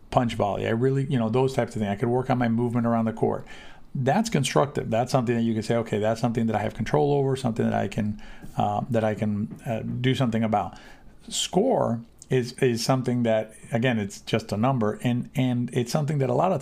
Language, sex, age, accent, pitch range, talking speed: English, male, 50-69, American, 110-130 Hz, 235 wpm